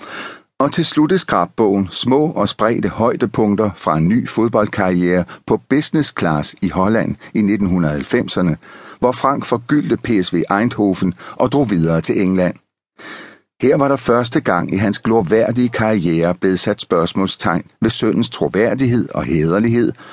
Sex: male